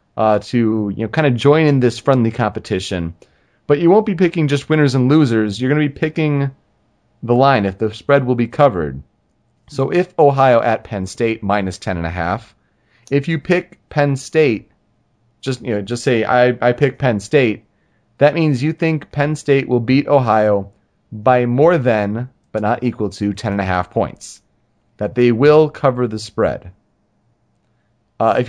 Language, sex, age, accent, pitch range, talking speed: English, male, 30-49, American, 105-135 Hz, 185 wpm